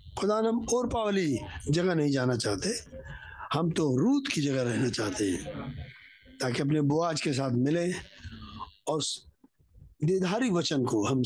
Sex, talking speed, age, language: male, 135 wpm, 60-79, Hindi